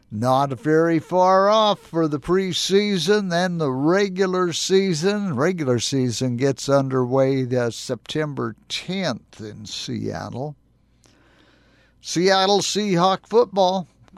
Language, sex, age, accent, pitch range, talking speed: English, male, 50-69, American, 135-185 Hz, 100 wpm